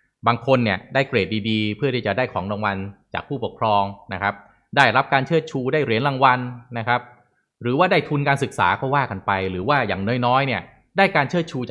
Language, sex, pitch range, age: Thai, male, 95-135 Hz, 20-39